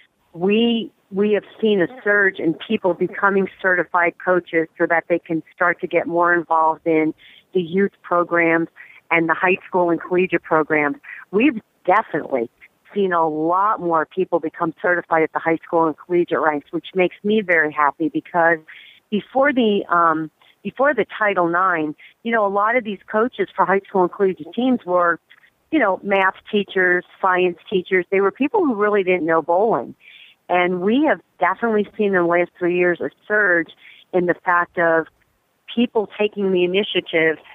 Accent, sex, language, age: American, female, English, 40-59